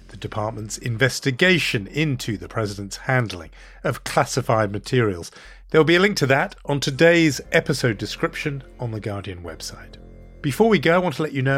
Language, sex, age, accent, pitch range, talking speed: English, male, 40-59, British, 105-150 Hz, 170 wpm